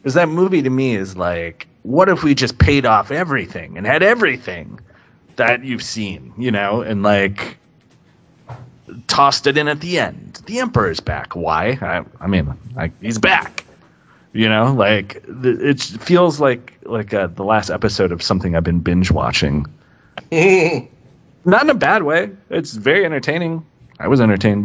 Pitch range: 100-145 Hz